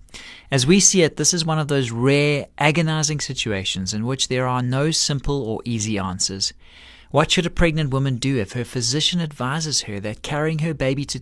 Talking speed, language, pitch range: 200 wpm, English, 110-155 Hz